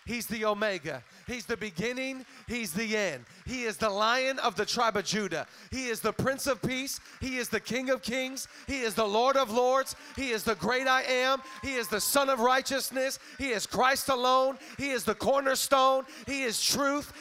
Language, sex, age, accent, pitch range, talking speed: Swedish, male, 40-59, American, 210-275 Hz, 205 wpm